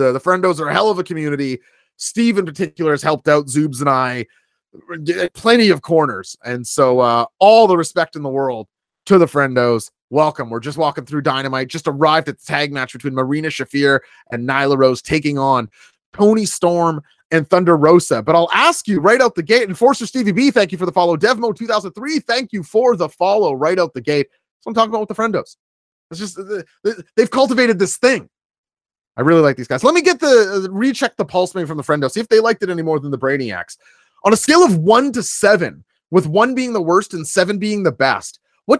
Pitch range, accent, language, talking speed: 145-220 Hz, American, English, 220 wpm